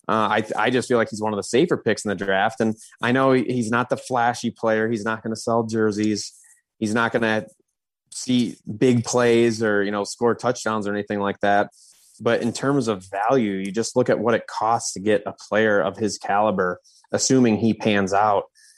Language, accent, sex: English, American, male